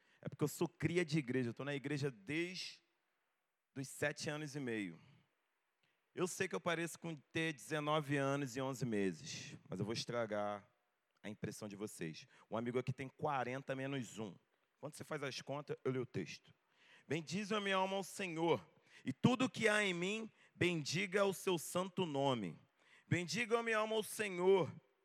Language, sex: Portuguese, male